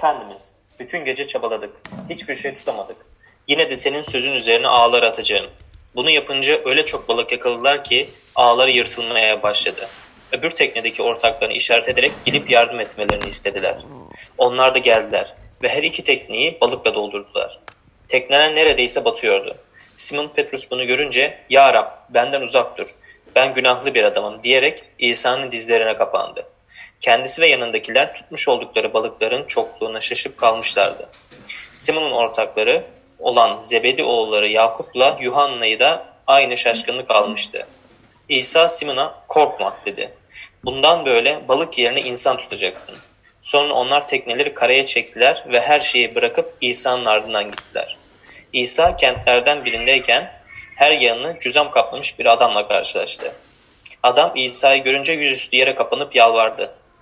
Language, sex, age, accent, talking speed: Turkish, male, 30-49, native, 125 wpm